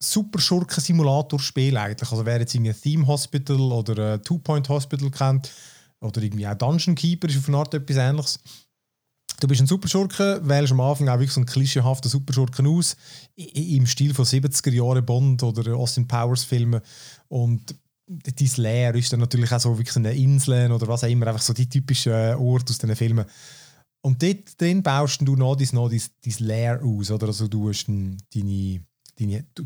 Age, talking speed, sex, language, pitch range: 30-49, 170 wpm, male, German, 120-145 Hz